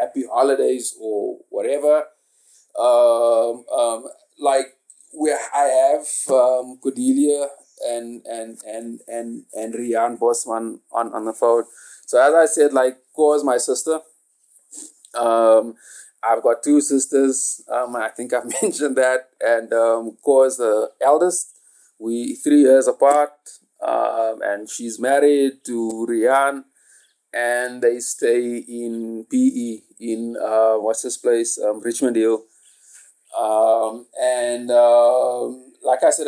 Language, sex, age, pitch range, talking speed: English, male, 30-49, 115-145 Hz, 130 wpm